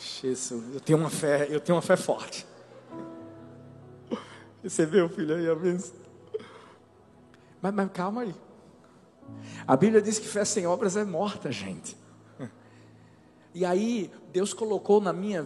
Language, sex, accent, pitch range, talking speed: Portuguese, male, Brazilian, 115-180 Hz, 135 wpm